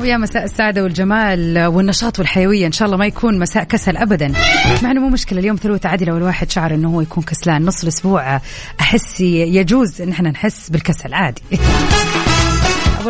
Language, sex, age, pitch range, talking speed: Arabic, female, 30-49, 175-220 Hz, 175 wpm